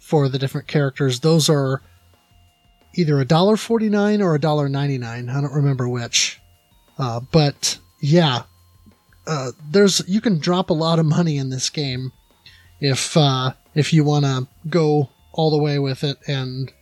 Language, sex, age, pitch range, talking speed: English, male, 30-49, 130-165 Hz, 165 wpm